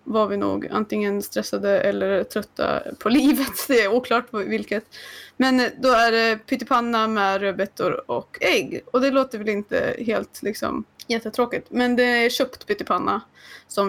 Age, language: 20-39, Swedish